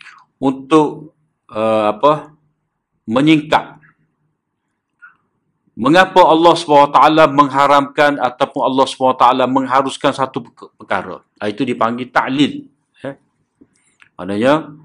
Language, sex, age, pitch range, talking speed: Malay, male, 50-69, 125-155 Hz, 75 wpm